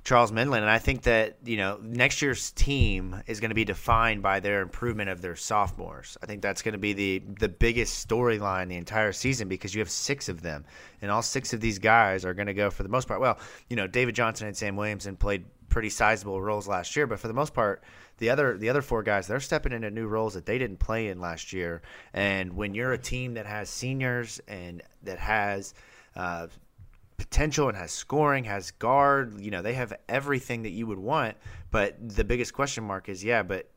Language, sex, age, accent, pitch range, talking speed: English, male, 30-49, American, 100-120 Hz, 220 wpm